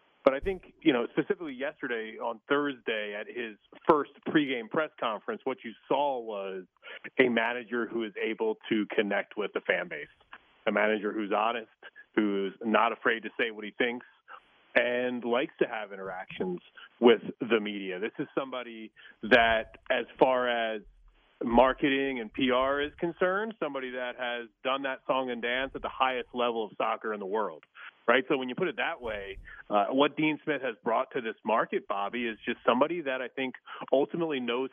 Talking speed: 180 wpm